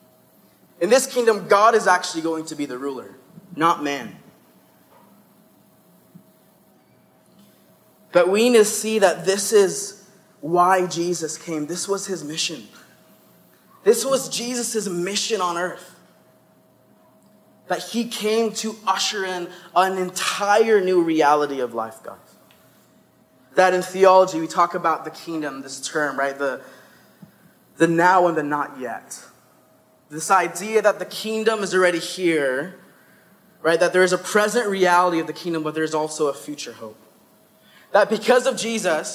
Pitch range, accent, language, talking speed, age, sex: 170-215 Hz, American, English, 145 wpm, 20-39, male